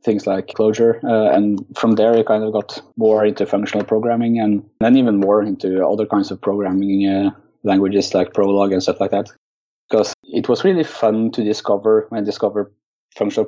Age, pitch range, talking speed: 20-39, 100-115 Hz, 185 wpm